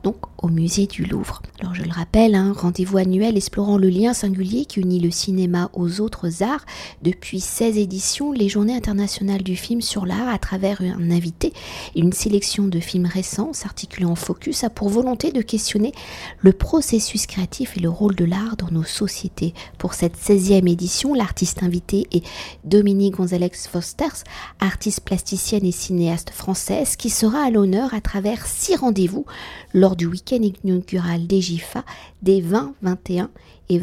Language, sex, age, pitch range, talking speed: French, female, 50-69, 180-215 Hz, 165 wpm